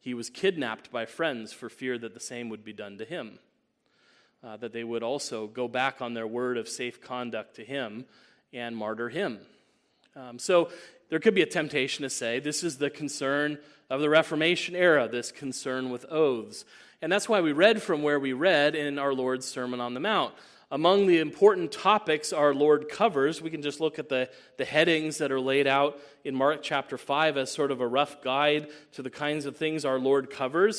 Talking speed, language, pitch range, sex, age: 210 wpm, English, 130-170 Hz, male, 30-49